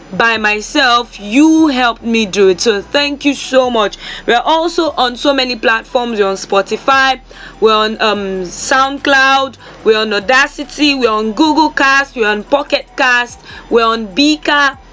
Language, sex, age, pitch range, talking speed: English, female, 20-39, 230-290 Hz, 160 wpm